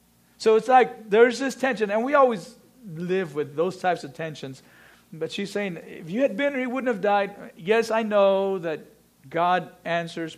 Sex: male